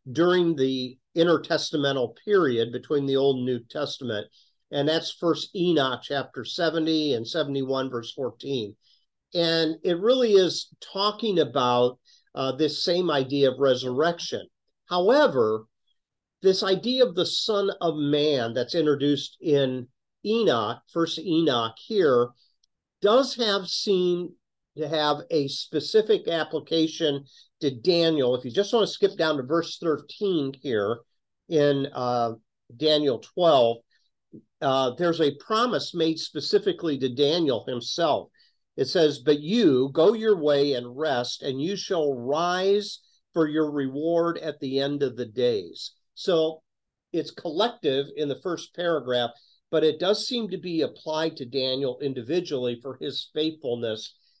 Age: 50-69